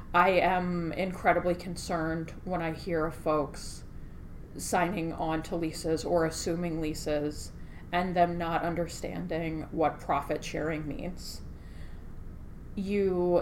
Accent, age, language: American, 30-49, English